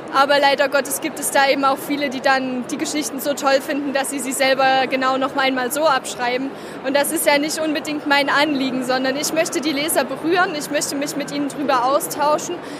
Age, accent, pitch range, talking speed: 20-39, German, 265-290 Hz, 215 wpm